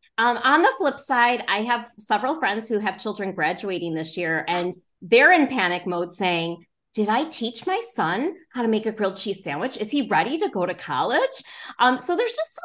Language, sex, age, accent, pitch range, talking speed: English, female, 20-39, American, 180-270 Hz, 215 wpm